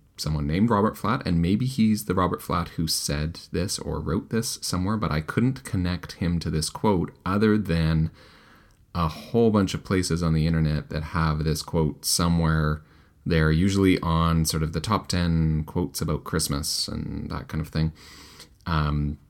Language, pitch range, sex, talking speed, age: English, 75-95 Hz, male, 175 wpm, 30-49